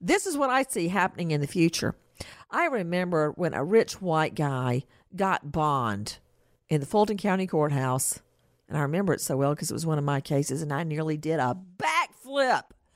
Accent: American